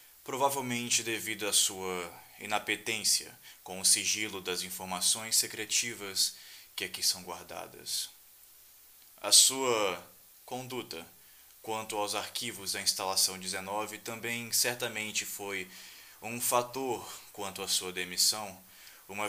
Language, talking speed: Portuguese, 105 wpm